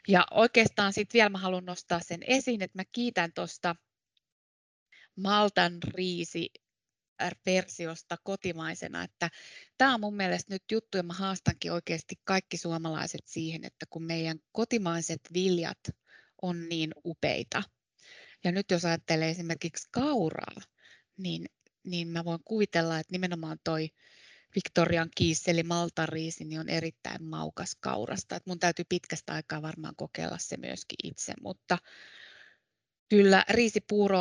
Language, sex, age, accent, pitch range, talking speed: Finnish, female, 20-39, native, 165-190 Hz, 125 wpm